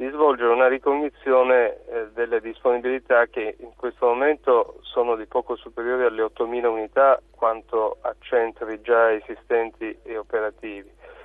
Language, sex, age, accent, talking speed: Italian, male, 30-49, native, 135 wpm